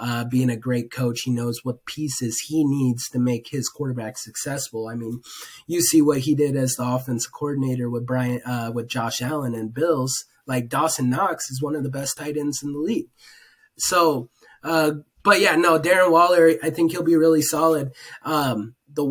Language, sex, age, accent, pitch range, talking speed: English, male, 20-39, American, 125-160 Hz, 200 wpm